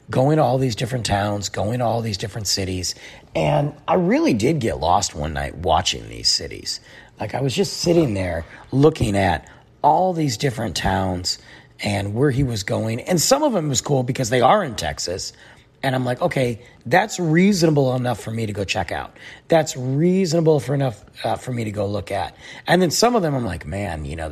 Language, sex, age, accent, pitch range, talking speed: English, male, 40-59, American, 100-135 Hz, 210 wpm